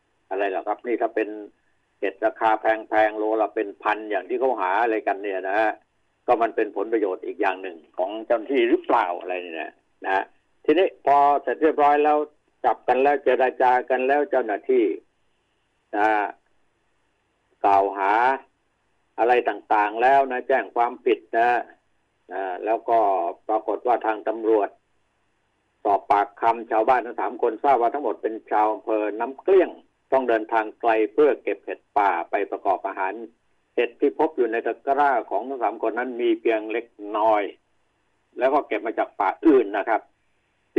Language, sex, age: Thai, male, 60-79